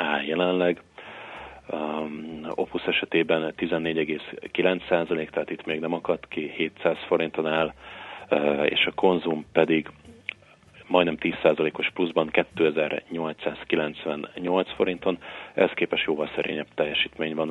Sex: male